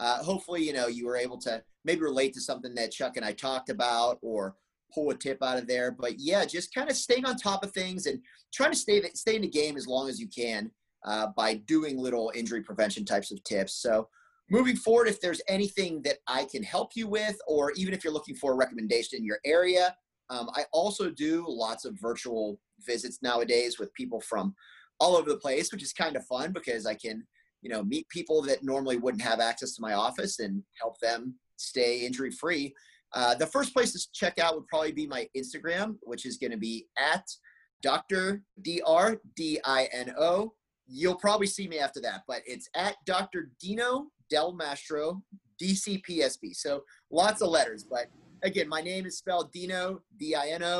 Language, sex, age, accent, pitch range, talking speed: English, male, 30-49, American, 125-195 Hz, 195 wpm